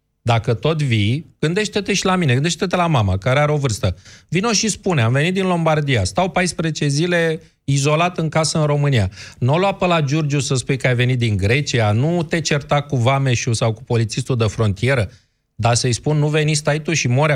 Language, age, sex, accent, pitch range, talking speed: Romanian, 30-49, male, native, 120-160 Hz, 210 wpm